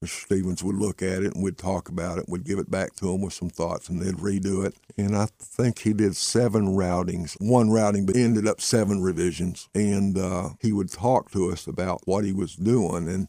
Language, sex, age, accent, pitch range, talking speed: English, male, 60-79, American, 90-105 Hz, 230 wpm